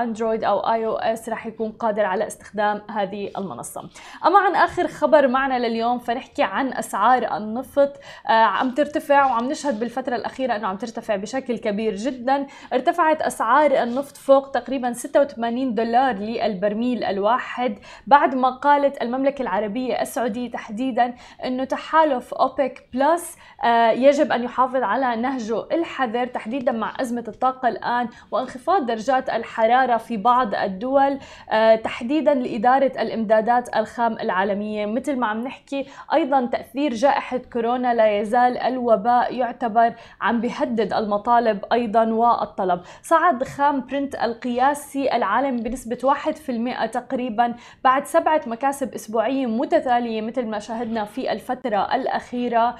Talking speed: 130 wpm